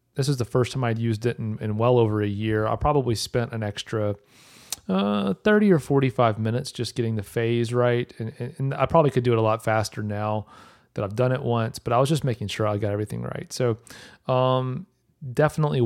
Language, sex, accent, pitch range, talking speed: English, male, American, 110-135 Hz, 225 wpm